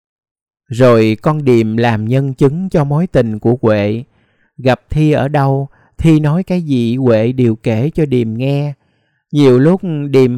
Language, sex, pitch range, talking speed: Vietnamese, male, 120-155 Hz, 160 wpm